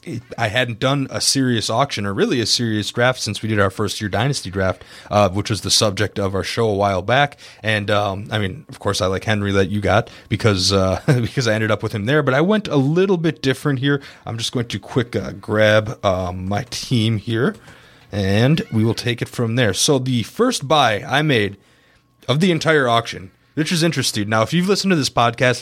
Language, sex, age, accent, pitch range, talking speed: English, male, 30-49, American, 110-145 Hz, 225 wpm